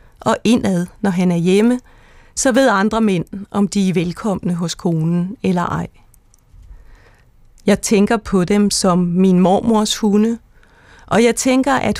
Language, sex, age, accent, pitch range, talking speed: Danish, female, 30-49, native, 180-220 Hz, 150 wpm